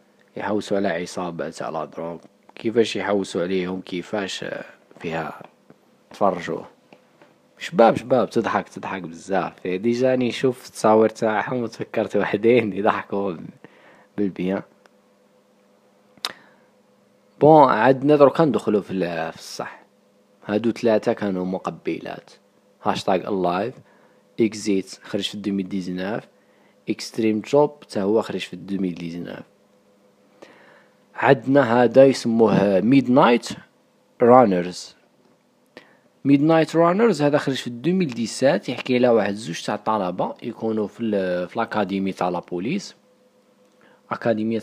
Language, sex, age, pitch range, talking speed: Arabic, male, 20-39, 100-130 Hz, 95 wpm